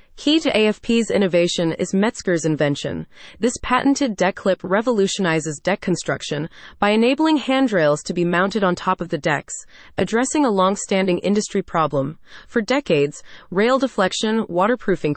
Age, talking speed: 30-49, 140 wpm